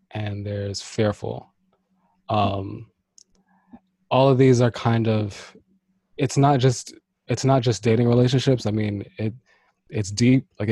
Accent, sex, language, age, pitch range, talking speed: American, male, English, 20-39, 100-120 Hz, 135 wpm